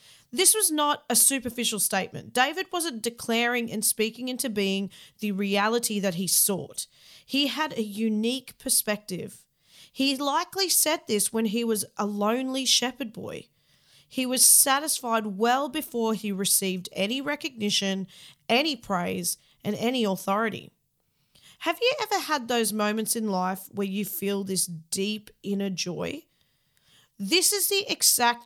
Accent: Australian